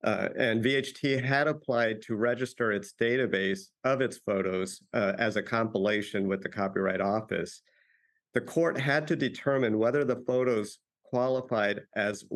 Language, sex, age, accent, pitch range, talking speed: English, male, 50-69, American, 105-130 Hz, 145 wpm